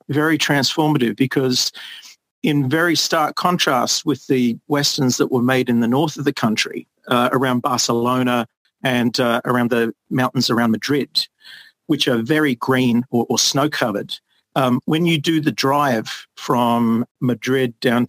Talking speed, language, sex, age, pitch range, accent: 145 wpm, English, male, 50-69, 120-145 Hz, Australian